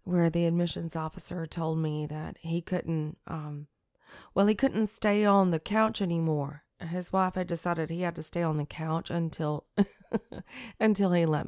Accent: American